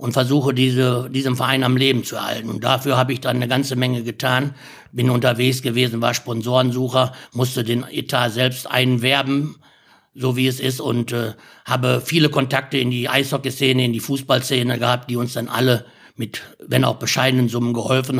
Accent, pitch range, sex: German, 125-135 Hz, male